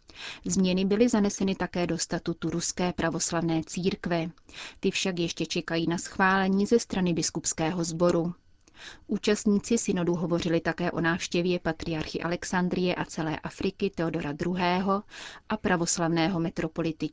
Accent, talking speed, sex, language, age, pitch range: native, 125 wpm, female, Czech, 30-49, 165-190 Hz